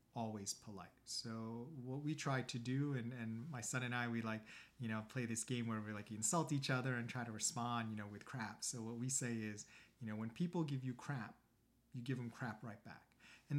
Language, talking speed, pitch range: English, 240 wpm, 115-135 Hz